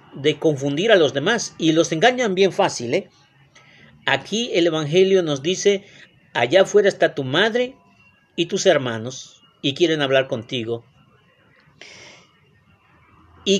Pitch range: 135-190 Hz